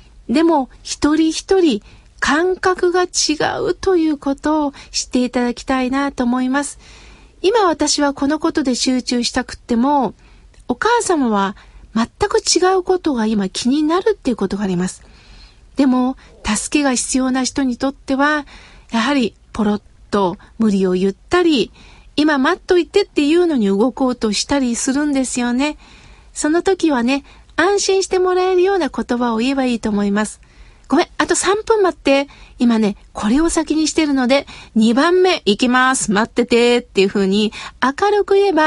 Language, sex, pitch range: Japanese, female, 235-320 Hz